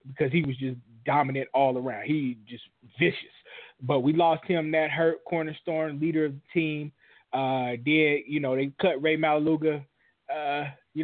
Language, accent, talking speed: English, American, 170 wpm